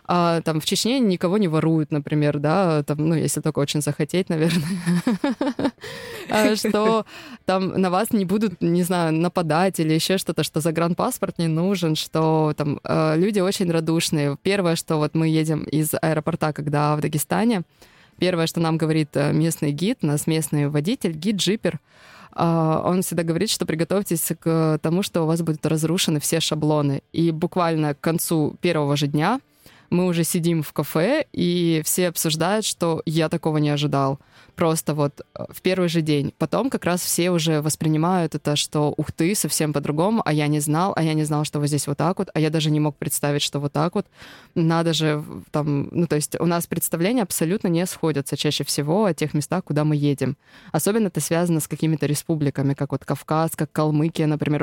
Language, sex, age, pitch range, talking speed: Russian, female, 20-39, 150-175 Hz, 180 wpm